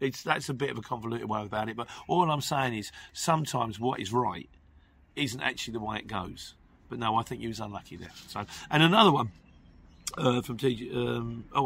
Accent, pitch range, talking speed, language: British, 110-155 Hz, 215 wpm, English